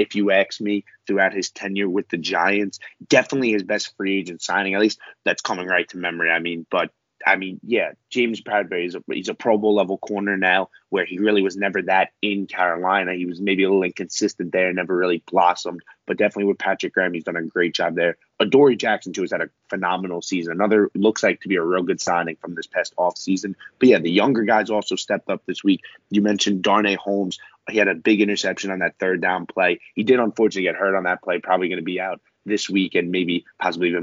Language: English